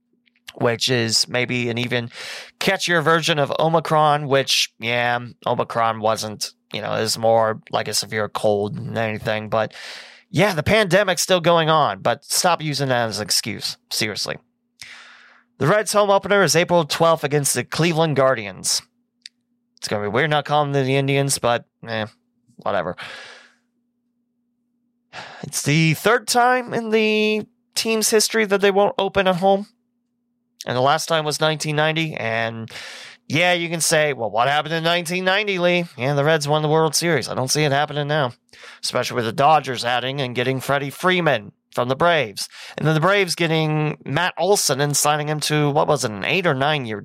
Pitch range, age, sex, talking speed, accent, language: 130-195 Hz, 20-39, male, 175 wpm, American, English